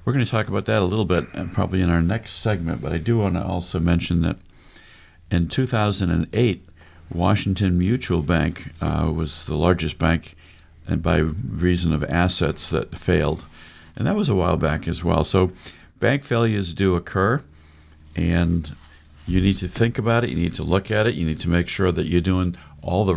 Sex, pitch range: male, 80-95 Hz